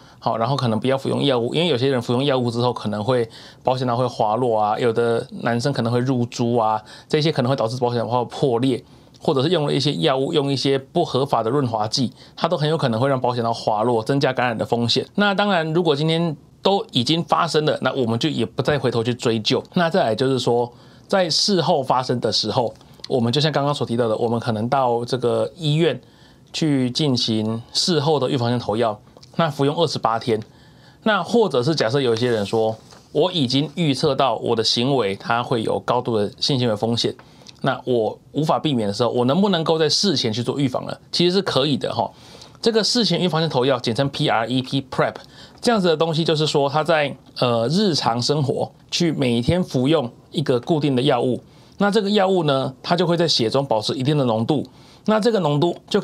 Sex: male